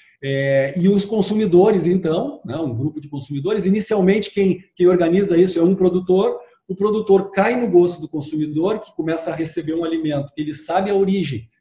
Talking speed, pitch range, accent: 180 wpm, 150-195 Hz, Brazilian